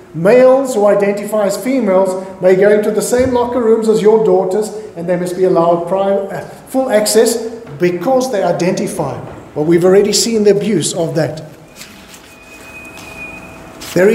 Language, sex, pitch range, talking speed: English, male, 170-215 Hz, 145 wpm